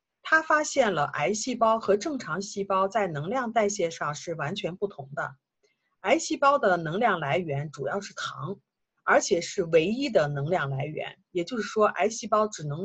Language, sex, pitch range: Chinese, female, 170-230 Hz